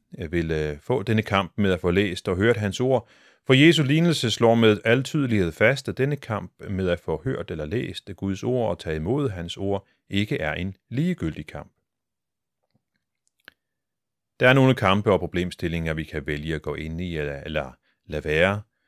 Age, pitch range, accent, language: 40-59, 80-115 Hz, native, Danish